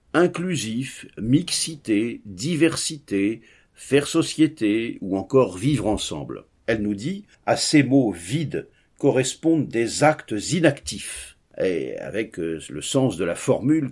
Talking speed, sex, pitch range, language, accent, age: 120 wpm, male, 105-150 Hz, French, French, 50-69